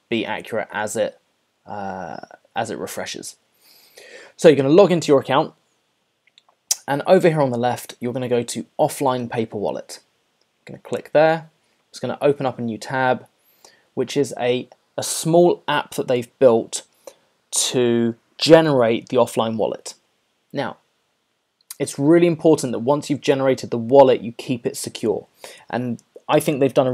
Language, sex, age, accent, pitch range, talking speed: English, male, 20-39, British, 125-160 Hz, 165 wpm